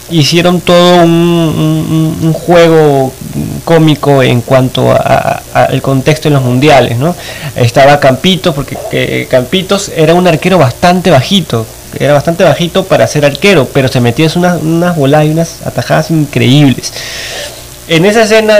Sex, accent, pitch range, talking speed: male, Argentinian, 135-165 Hz, 145 wpm